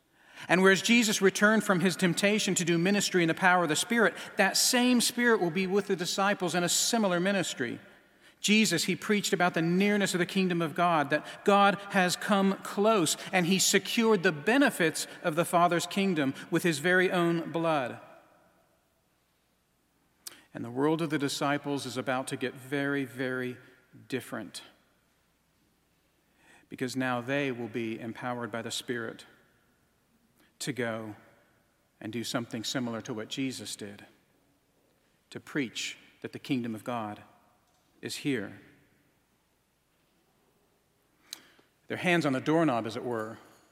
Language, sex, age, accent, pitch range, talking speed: English, male, 40-59, American, 130-195 Hz, 145 wpm